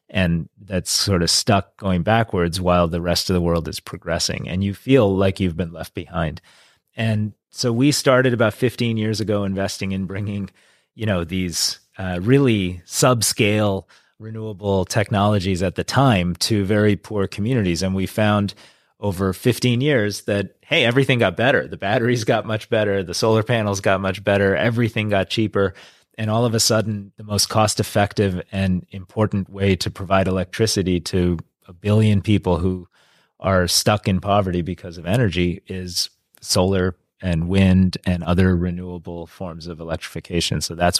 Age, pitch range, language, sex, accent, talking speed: 30-49, 90-105 Hz, English, male, American, 165 wpm